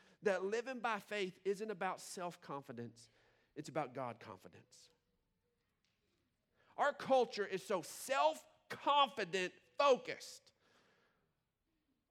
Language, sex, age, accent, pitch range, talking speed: English, male, 40-59, American, 210-325 Hz, 95 wpm